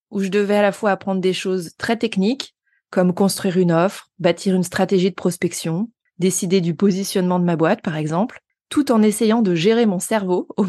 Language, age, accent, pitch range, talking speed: French, 20-39, French, 180-220 Hz, 200 wpm